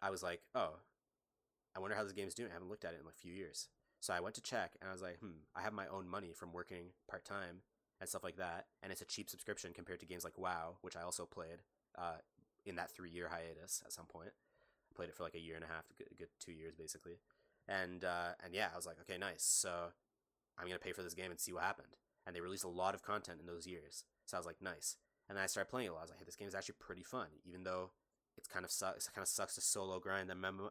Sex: male